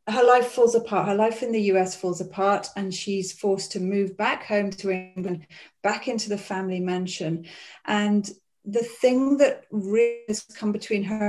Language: English